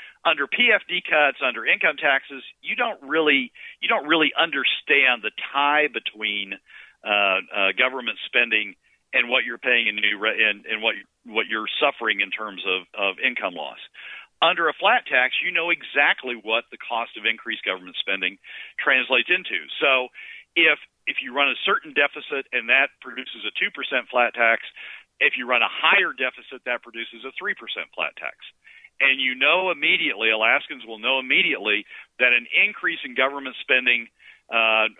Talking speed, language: 165 wpm, English